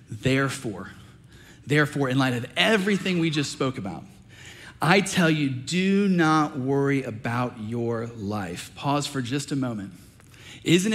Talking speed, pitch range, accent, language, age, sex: 135 wpm, 115-155 Hz, American, English, 40-59, male